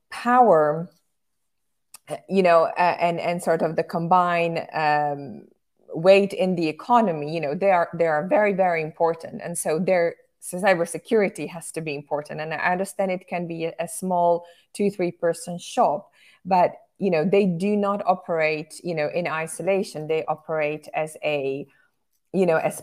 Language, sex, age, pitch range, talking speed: English, female, 20-39, 160-195 Hz, 165 wpm